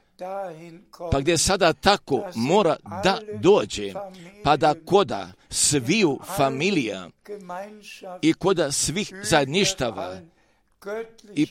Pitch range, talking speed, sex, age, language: 155-195 Hz, 90 wpm, male, 50-69, Croatian